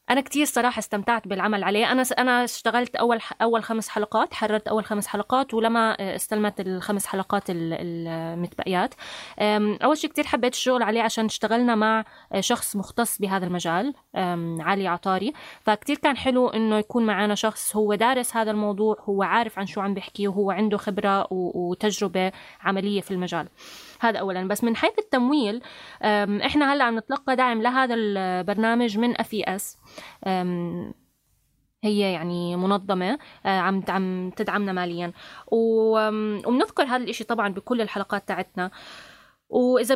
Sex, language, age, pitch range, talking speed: female, Arabic, 20-39, 195-240 Hz, 135 wpm